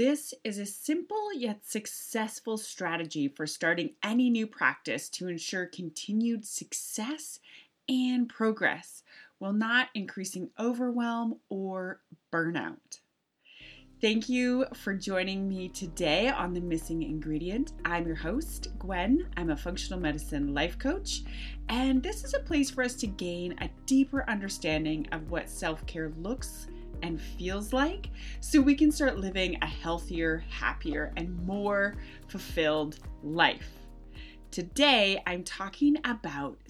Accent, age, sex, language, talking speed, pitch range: American, 30-49, female, English, 130 wpm, 170-250 Hz